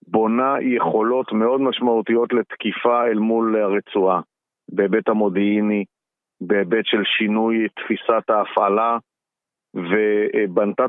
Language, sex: Hebrew, male